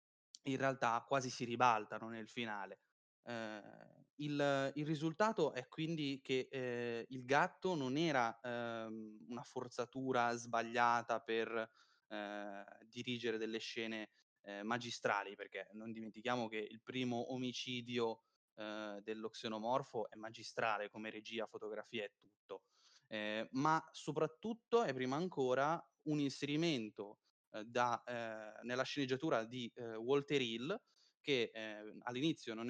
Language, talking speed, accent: Italian, 120 wpm, native